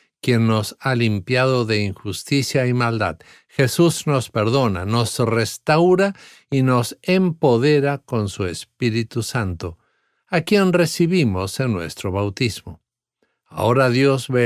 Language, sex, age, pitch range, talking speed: English, male, 50-69, 110-145 Hz, 120 wpm